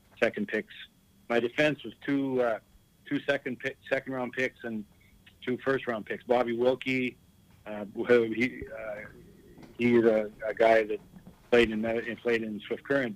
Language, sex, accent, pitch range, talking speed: English, male, American, 105-120 Hz, 155 wpm